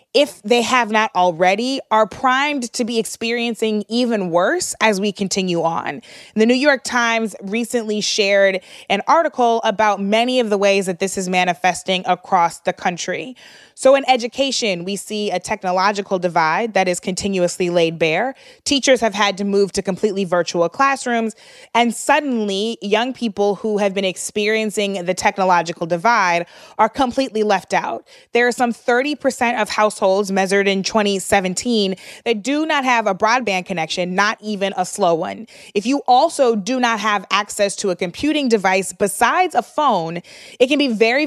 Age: 20-39